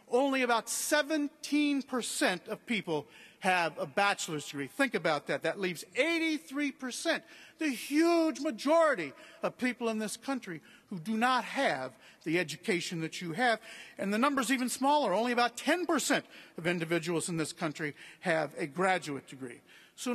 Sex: male